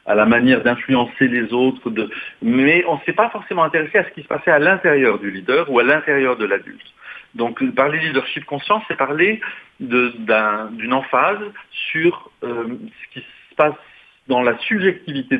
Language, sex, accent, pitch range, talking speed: French, male, French, 125-170 Hz, 170 wpm